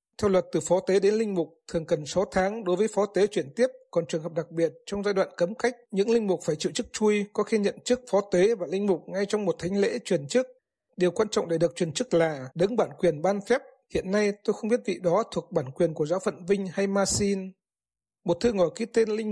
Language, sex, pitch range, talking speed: Vietnamese, male, 175-210 Hz, 265 wpm